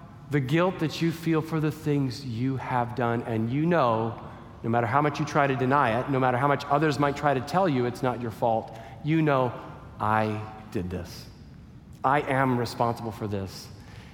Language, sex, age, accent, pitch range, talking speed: English, male, 40-59, American, 120-155 Hz, 200 wpm